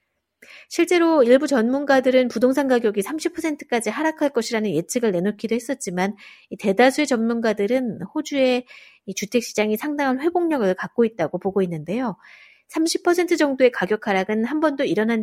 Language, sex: Korean, female